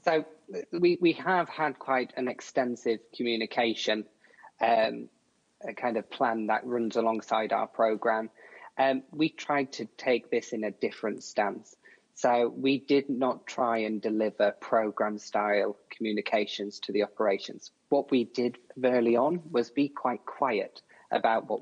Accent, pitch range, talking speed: British, 110-135 Hz, 140 wpm